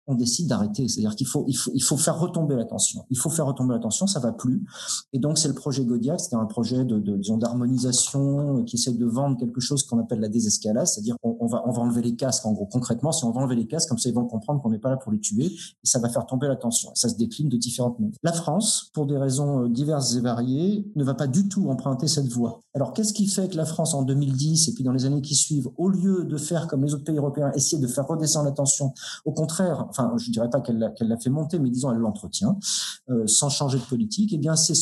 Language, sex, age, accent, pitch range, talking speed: French, male, 40-59, French, 120-165 Hz, 265 wpm